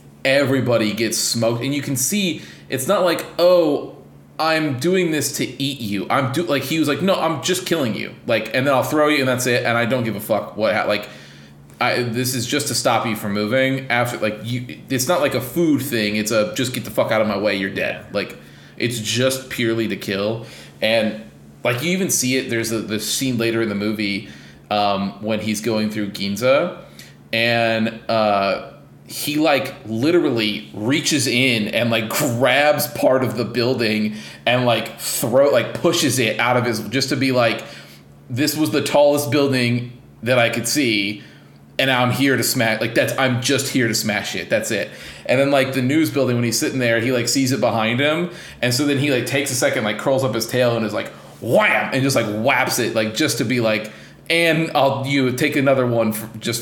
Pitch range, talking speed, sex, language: 110-135 Hz, 215 wpm, male, English